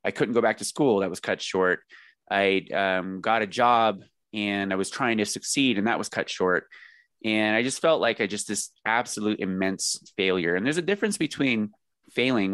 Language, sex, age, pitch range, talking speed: English, male, 20-39, 95-120 Hz, 205 wpm